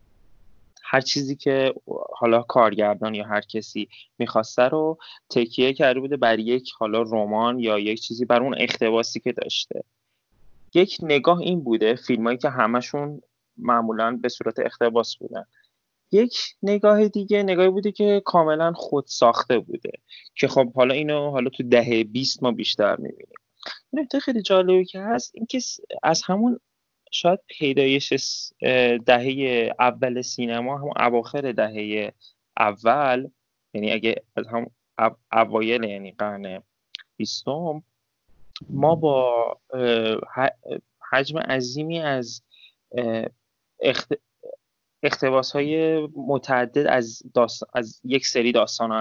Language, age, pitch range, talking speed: Persian, 20-39, 115-150 Hz, 120 wpm